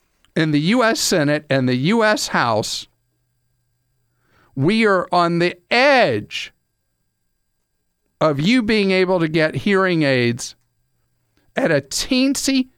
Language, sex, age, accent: English, male, 50-69, American